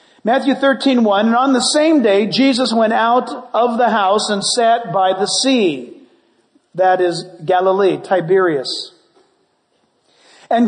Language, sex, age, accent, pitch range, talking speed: English, male, 50-69, American, 220-275 Hz, 135 wpm